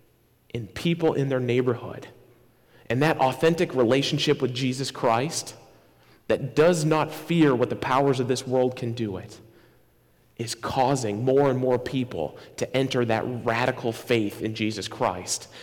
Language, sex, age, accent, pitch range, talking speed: English, male, 40-59, American, 115-150 Hz, 150 wpm